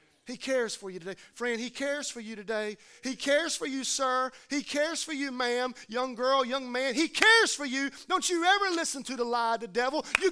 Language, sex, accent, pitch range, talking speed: English, male, American, 210-275 Hz, 235 wpm